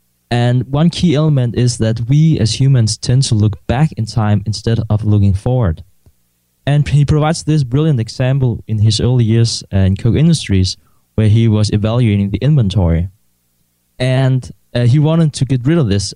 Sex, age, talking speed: male, 20-39, 175 wpm